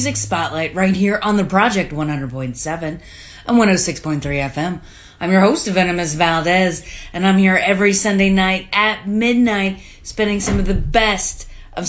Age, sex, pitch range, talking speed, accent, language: 30-49, female, 175-245 Hz, 145 wpm, American, English